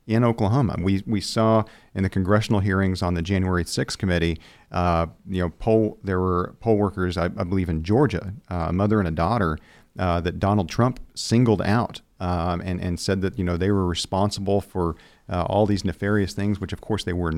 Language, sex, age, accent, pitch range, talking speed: English, male, 40-59, American, 90-110 Hz, 205 wpm